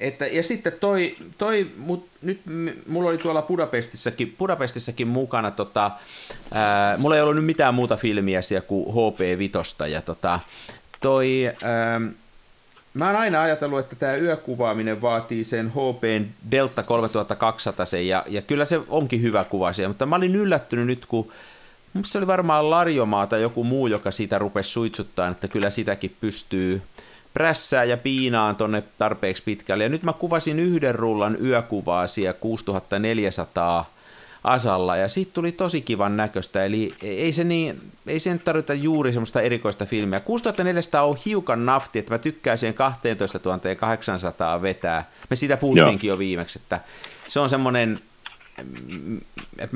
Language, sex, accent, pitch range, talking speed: Finnish, male, native, 100-150 Hz, 140 wpm